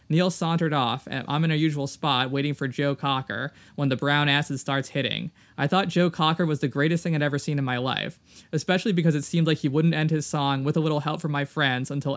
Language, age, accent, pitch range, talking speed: English, 20-39, American, 135-165 Hz, 250 wpm